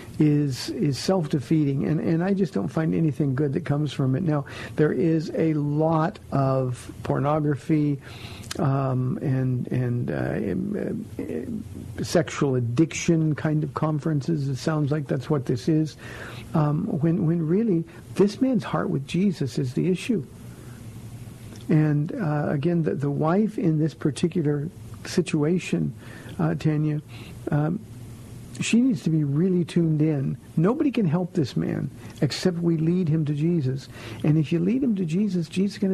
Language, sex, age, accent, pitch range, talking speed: English, male, 50-69, American, 145-180 Hz, 155 wpm